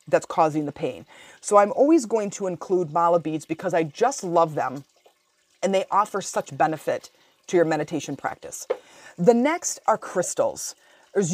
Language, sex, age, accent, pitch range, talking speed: English, female, 30-49, American, 165-215 Hz, 165 wpm